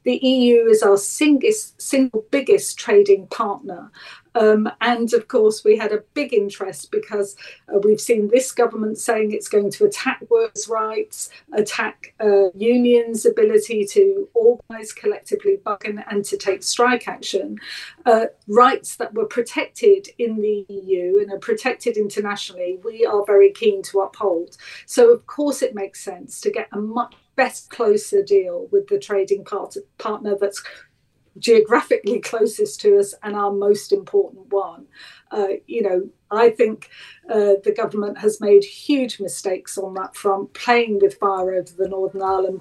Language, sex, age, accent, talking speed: English, female, 40-59, British, 155 wpm